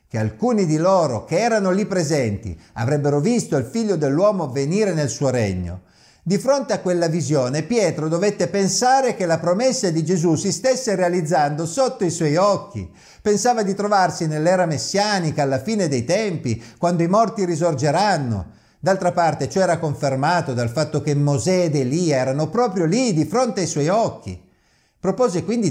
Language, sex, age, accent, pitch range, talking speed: Italian, male, 50-69, native, 130-185 Hz, 165 wpm